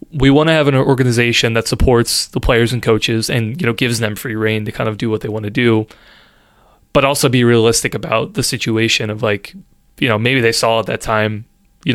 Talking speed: 230 wpm